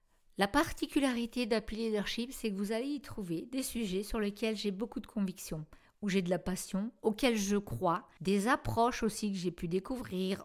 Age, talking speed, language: 50-69, 190 wpm, French